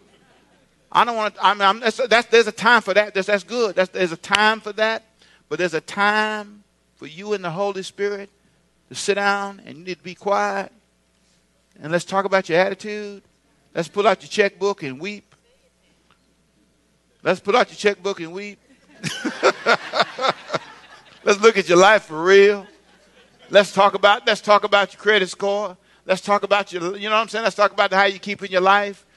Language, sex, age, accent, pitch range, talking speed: English, male, 60-79, American, 185-205 Hz, 195 wpm